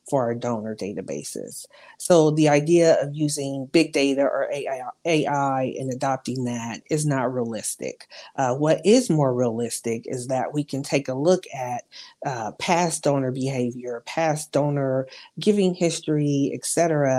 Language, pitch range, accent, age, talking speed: English, 130-170 Hz, American, 40-59, 145 wpm